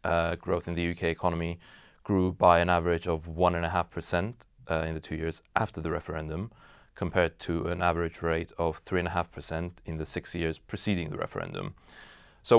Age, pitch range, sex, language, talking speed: 30-49, 85-105 Hz, male, English, 200 wpm